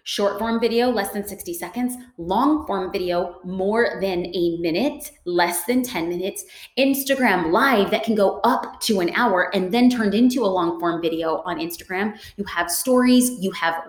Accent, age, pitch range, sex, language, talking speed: American, 30-49, 190-250 Hz, female, English, 180 wpm